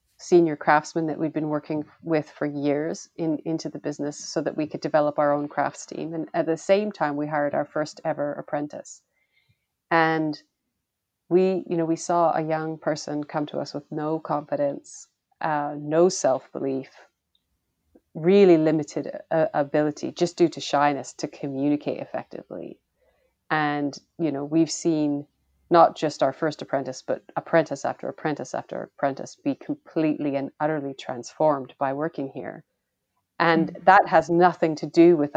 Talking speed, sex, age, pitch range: 160 wpm, female, 30-49, 145-165 Hz